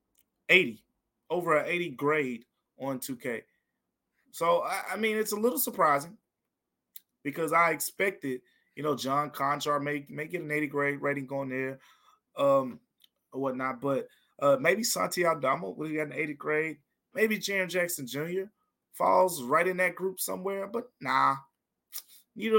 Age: 20-39